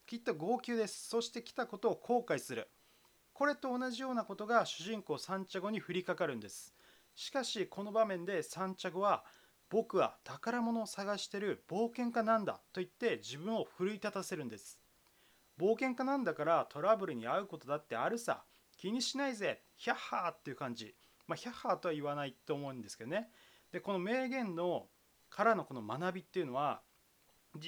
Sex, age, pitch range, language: male, 30-49, 175-235 Hz, Japanese